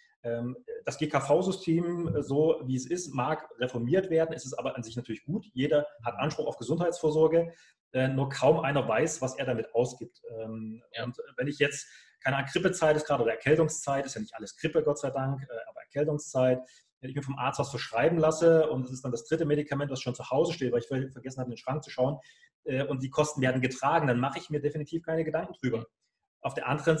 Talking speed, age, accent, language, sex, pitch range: 210 wpm, 30-49, German, German, male, 130-160 Hz